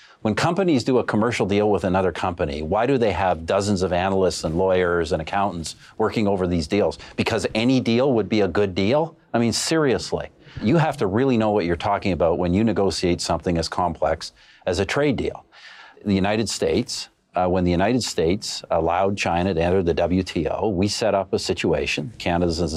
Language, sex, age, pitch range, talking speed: English, male, 50-69, 85-105 Hz, 195 wpm